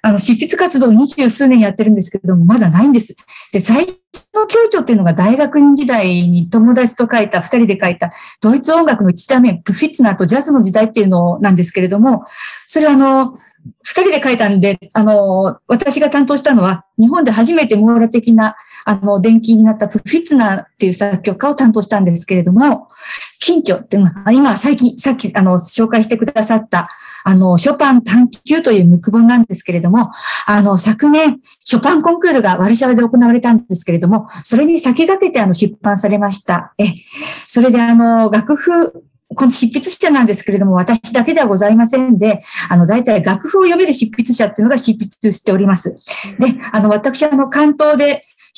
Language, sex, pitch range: Japanese, female, 200-270 Hz